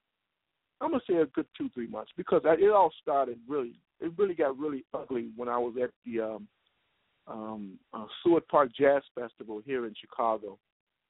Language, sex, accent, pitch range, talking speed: English, male, American, 120-180 Hz, 180 wpm